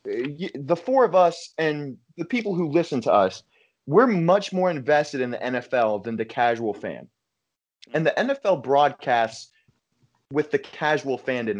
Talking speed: 160 wpm